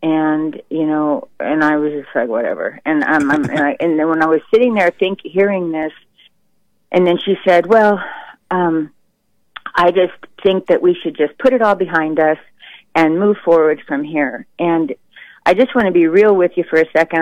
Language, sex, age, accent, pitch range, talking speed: English, female, 40-59, American, 145-180 Hz, 210 wpm